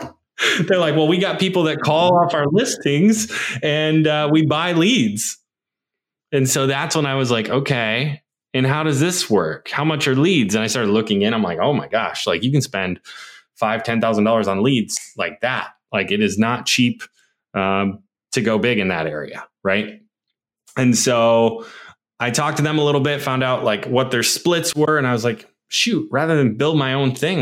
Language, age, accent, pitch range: English, 20-39, American, 120-155 Hz